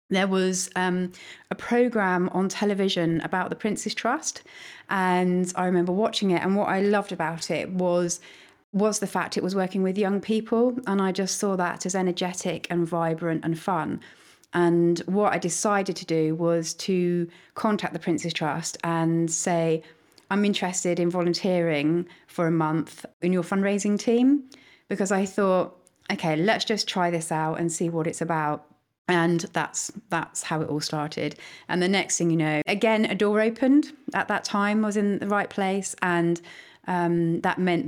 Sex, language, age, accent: female, English, 30-49, British